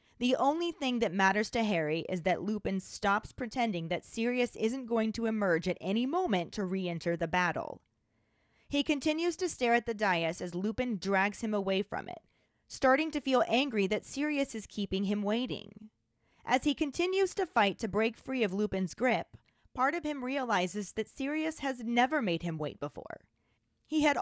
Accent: American